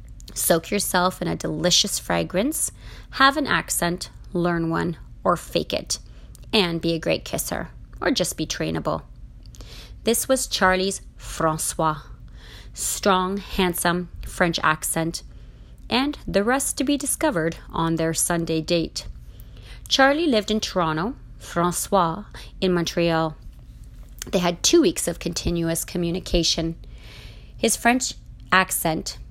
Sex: female